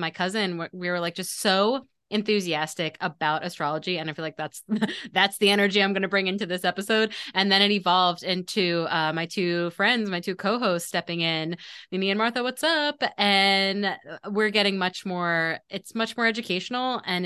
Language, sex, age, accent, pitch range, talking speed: English, female, 20-39, American, 170-210 Hz, 185 wpm